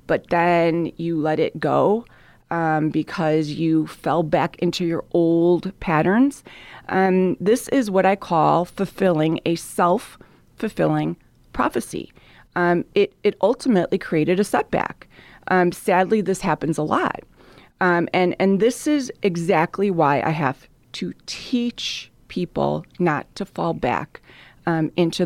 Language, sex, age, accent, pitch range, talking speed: English, female, 30-49, American, 165-205 Hz, 135 wpm